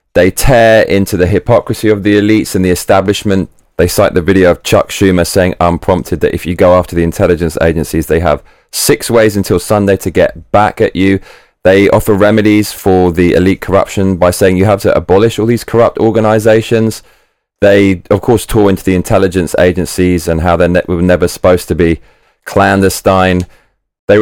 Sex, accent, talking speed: male, British, 185 wpm